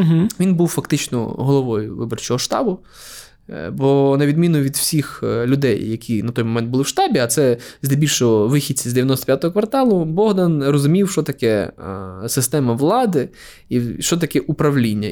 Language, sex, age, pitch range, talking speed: Ukrainian, male, 20-39, 125-150 Hz, 145 wpm